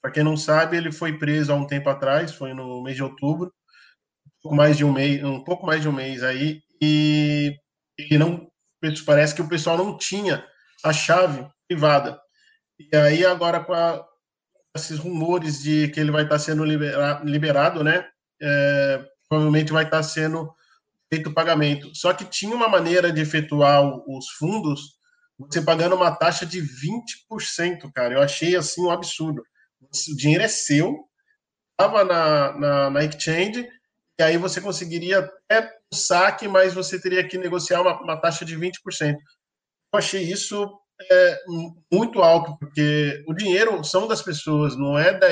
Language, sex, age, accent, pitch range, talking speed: Portuguese, male, 20-39, Brazilian, 150-185 Hz, 170 wpm